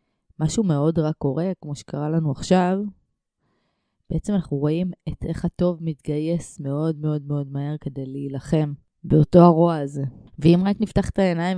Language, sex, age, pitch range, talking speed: Hebrew, female, 20-39, 150-180 Hz, 150 wpm